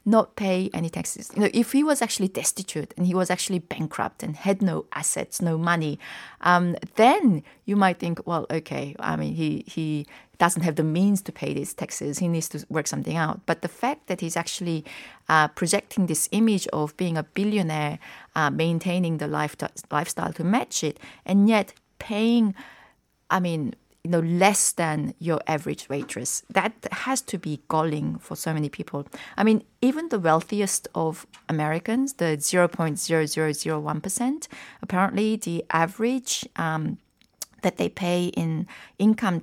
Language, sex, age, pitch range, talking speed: English, female, 30-49, 160-205 Hz, 165 wpm